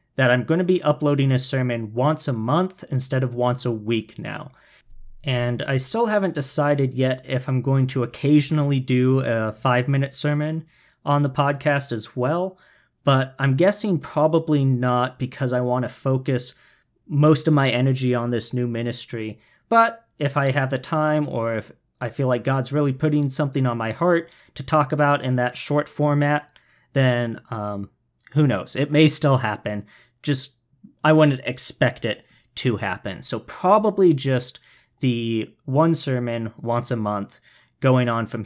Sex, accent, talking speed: male, American, 165 wpm